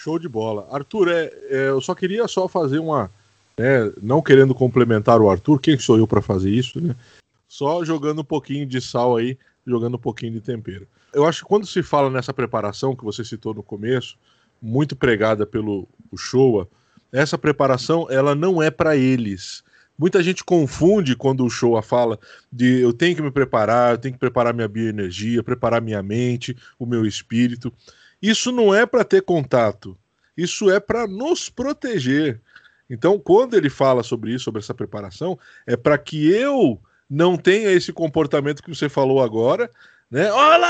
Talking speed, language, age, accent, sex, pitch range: 175 wpm, Portuguese, 20-39, Brazilian, male, 120-170 Hz